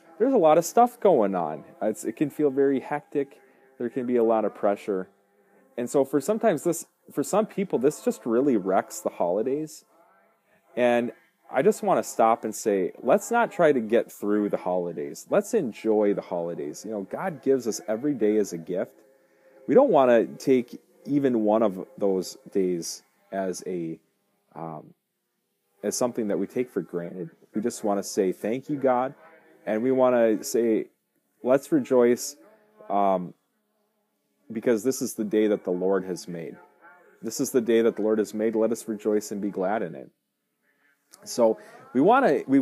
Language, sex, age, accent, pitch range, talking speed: English, male, 30-49, American, 100-140 Hz, 180 wpm